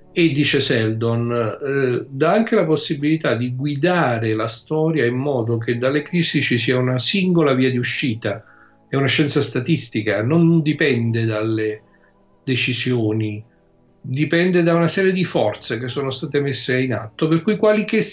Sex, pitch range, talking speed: male, 115-160 Hz, 160 wpm